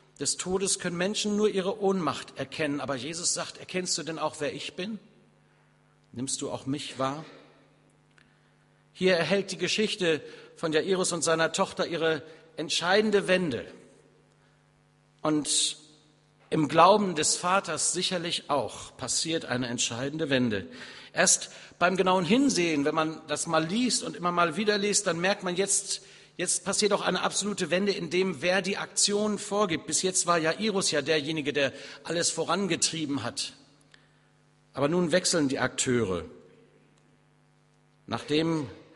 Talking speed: 145 wpm